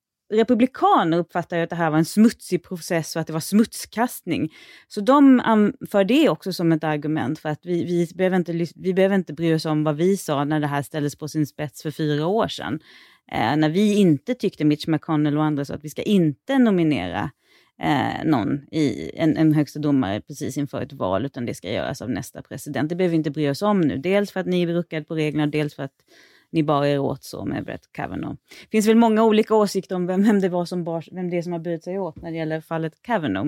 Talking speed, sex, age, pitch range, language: 240 wpm, female, 30-49, 150-195 Hz, Swedish